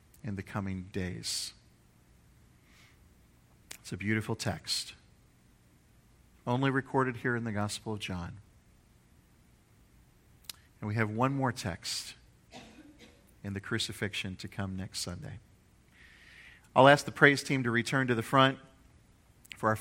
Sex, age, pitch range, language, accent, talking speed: male, 50-69, 100-135 Hz, English, American, 125 wpm